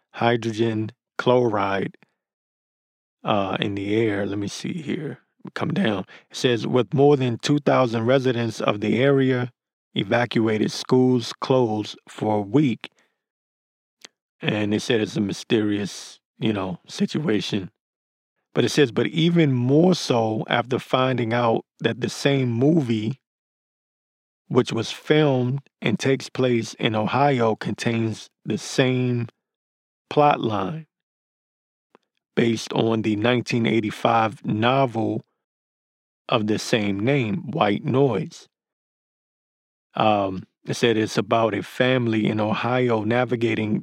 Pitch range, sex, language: 110-130 Hz, male, English